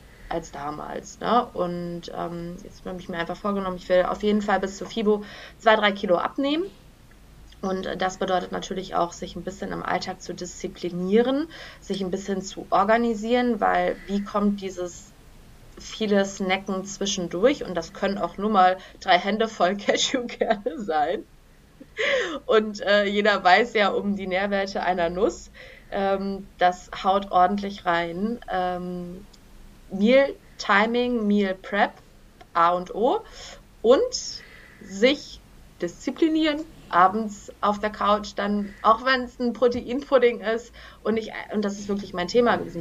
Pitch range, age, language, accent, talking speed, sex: 185-220 Hz, 20-39, German, German, 140 wpm, female